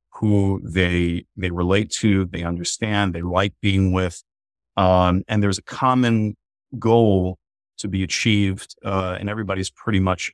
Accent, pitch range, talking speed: American, 90-105 Hz, 145 wpm